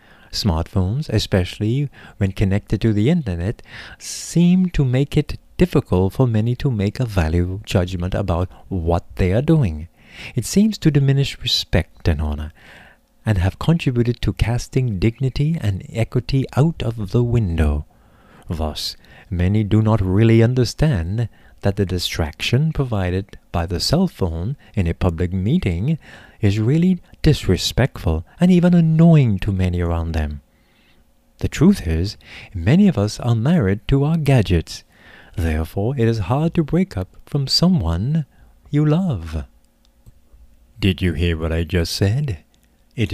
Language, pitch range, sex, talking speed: English, 85-125 Hz, male, 140 wpm